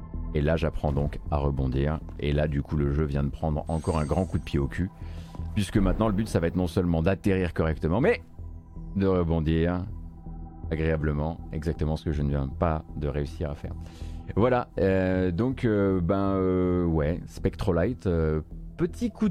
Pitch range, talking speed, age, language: 80-95 Hz, 185 wpm, 30-49, French